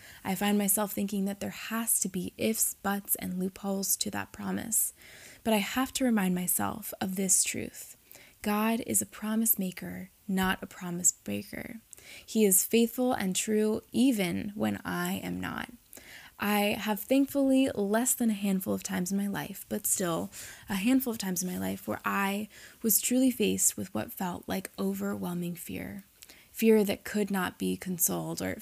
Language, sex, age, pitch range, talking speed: English, female, 20-39, 175-210 Hz, 175 wpm